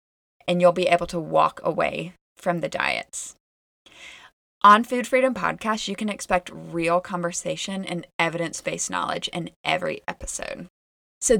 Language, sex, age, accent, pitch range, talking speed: English, female, 20-39, American, 165-200 Hz, 135 wpm